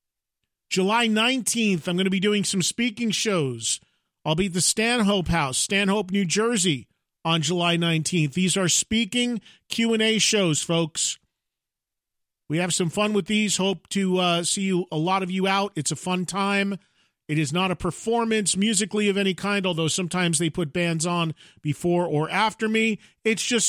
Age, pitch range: 40-59, 170-220 Hz